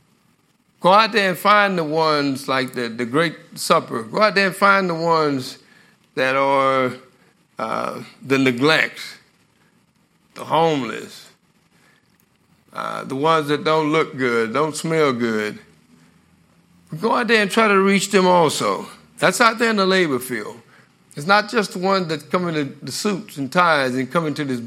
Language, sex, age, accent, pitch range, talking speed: English, male, 60-79, American, 135-195 Hz, 165 wpm